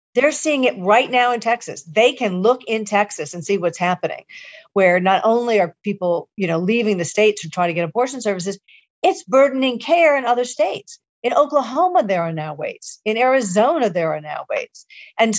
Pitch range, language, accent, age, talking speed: 175-240 Hz, English, American, 50-69, 200 wpm